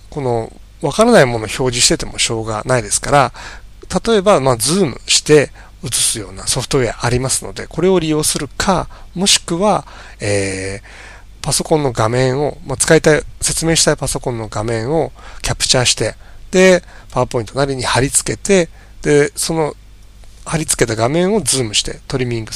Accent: native